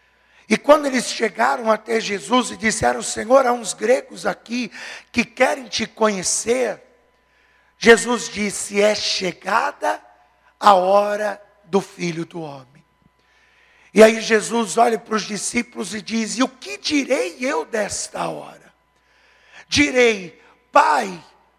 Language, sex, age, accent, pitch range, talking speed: Portuguese, male, 50-69, Brazilian, 220-290 Hz, 125 wpm